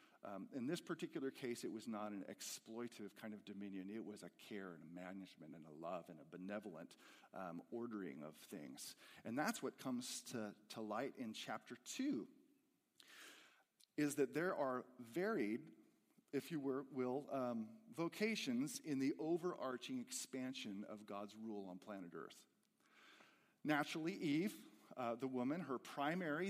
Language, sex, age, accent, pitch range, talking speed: English, male, 40-59, American, 115-170 Hz, 150 wpm